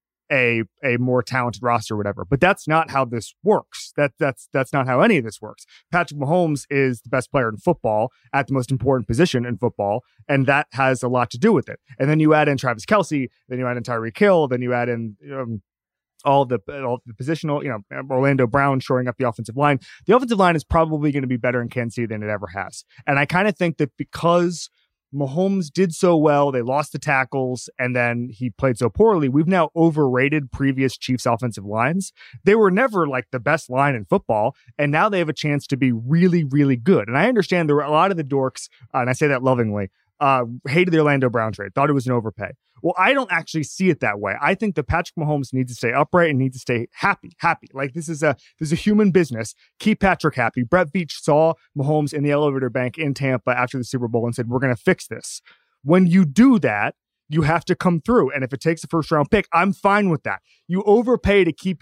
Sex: male